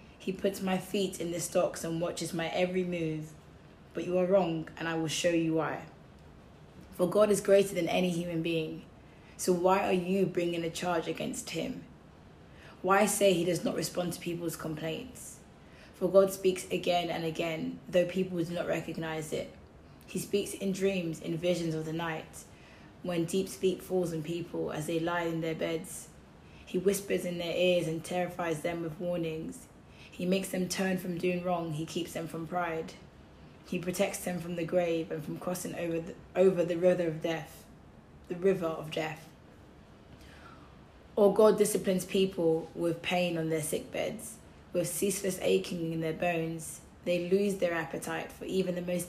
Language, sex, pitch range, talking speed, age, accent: English, female, 165-185 Hz, 180 wpm, 20-39, British